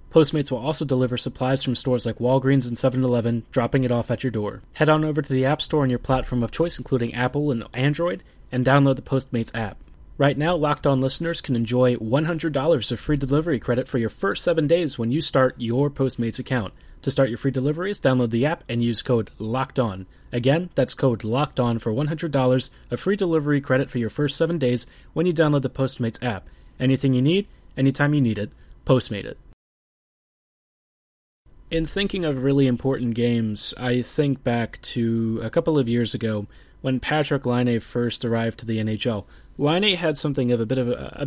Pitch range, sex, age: 120-145 Hz, male, 30-49